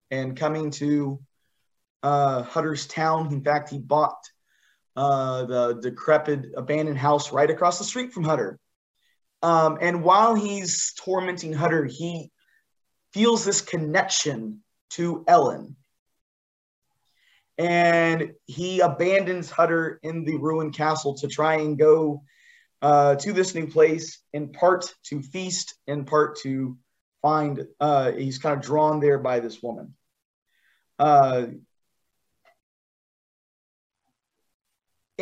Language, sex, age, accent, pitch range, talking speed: English, male, 30-49, American, 140-175 Hz, 115 wpm